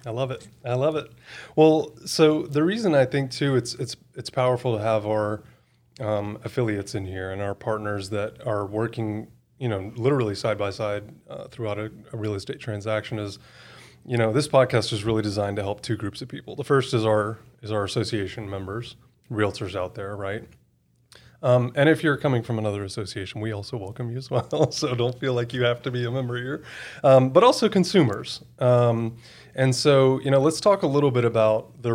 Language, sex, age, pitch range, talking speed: English, male, 30-49, 105-130 Hz, 205 wpm